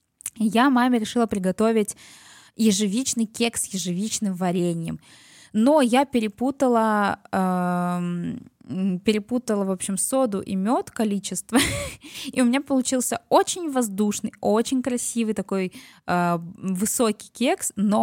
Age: 20-39